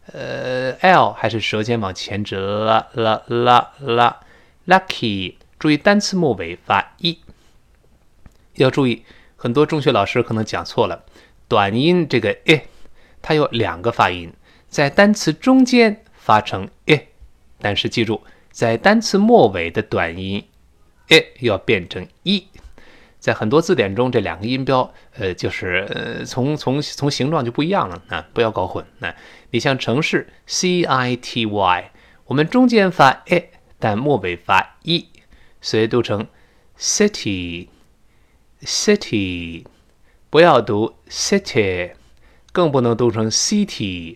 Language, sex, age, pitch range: Chinese, male, 20-39, 100-160 Hz